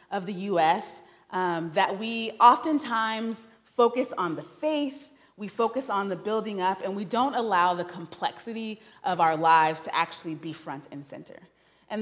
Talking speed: 165 wpm